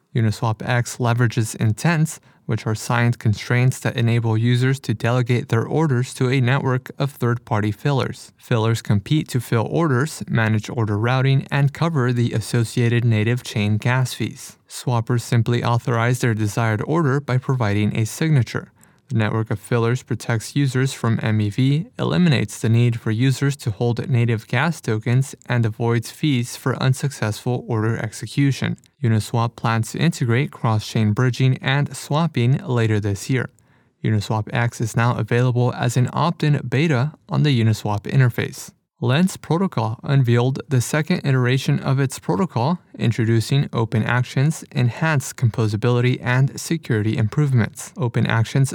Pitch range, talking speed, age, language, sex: 115-140 Hz, 140 wpm, 20-39, English, male